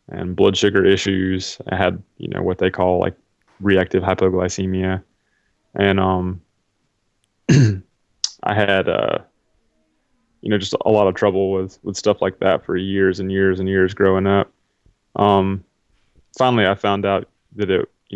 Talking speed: 155 wpm